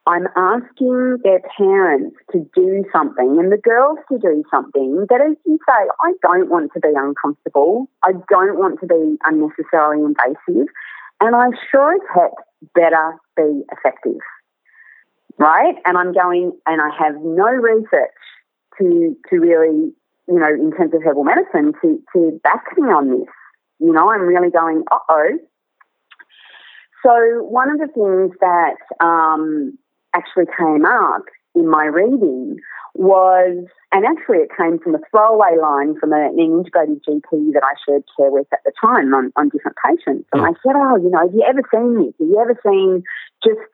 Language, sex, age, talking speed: English, female, 40-59, 165 wpm